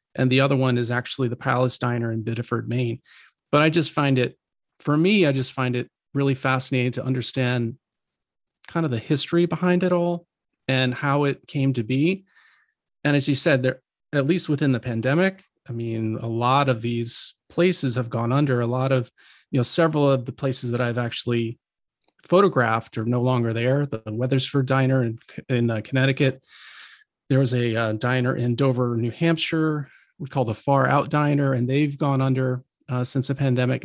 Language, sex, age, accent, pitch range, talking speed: English, male, 40-59, American, 125-145 Hz, 190 wpm